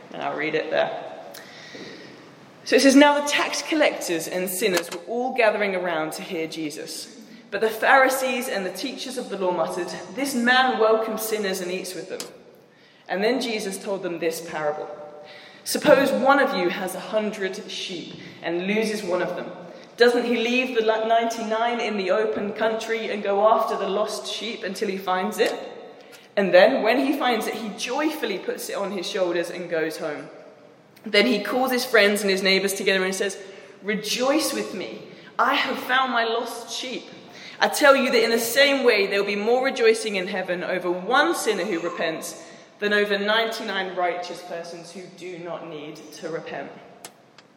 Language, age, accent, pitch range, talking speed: English, 20-39, British, 180-240 Hz, 185 wpm